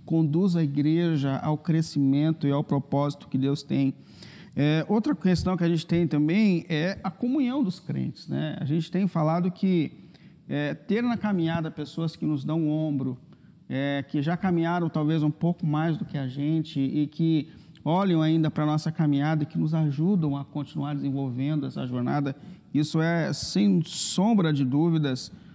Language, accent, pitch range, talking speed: Portuguese, Brazilian, 145-170 Hz, 170 wpm